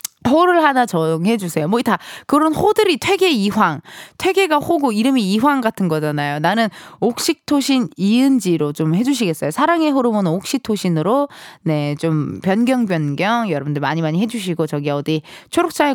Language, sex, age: Korean, female, 20-39